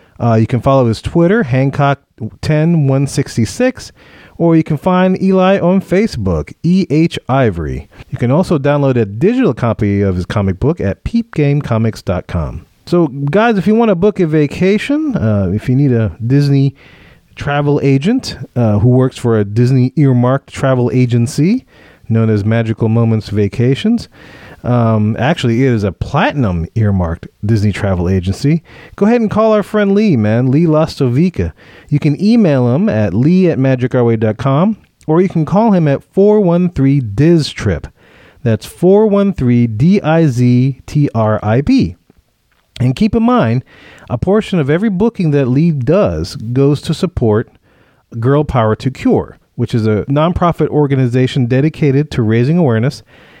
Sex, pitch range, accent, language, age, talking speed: male, 115-170 Hz, American, English, 30-49, 150 wpm